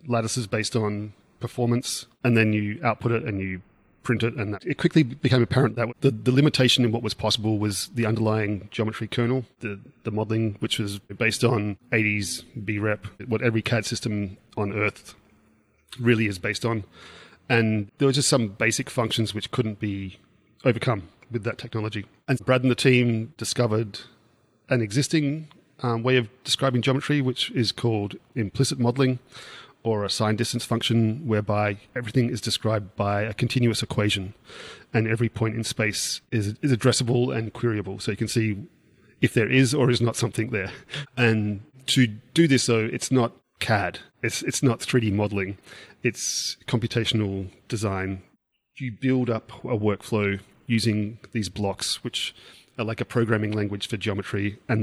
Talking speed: 165 wpm